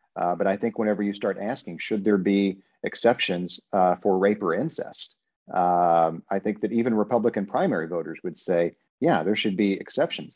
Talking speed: 185 wpm